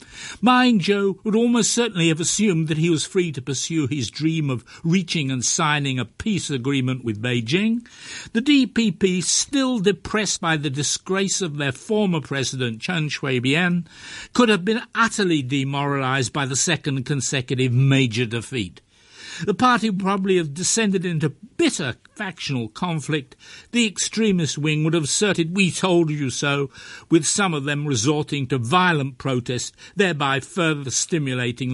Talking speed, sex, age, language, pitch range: 145 wpm, male, 60-79, English, 125-190 Hz